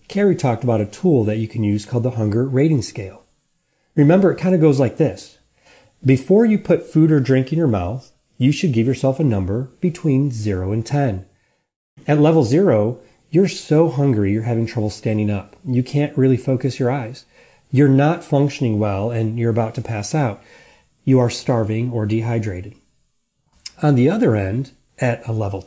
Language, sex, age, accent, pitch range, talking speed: English, male, 40-59, American, 110-150 Hz, 185 wpm